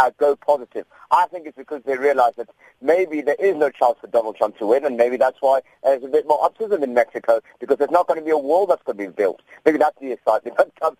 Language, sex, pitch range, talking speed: English, male, 120-145 Hz, 280 wpm